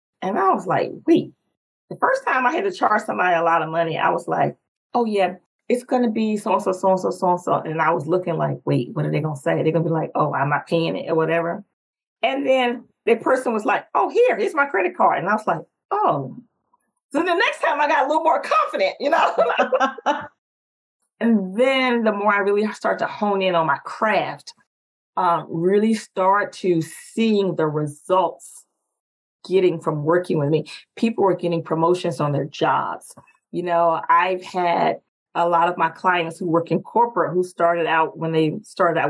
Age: 30-49